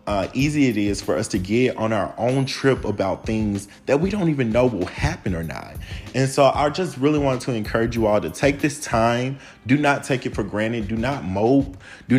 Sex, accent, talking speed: male, American, 230 wpm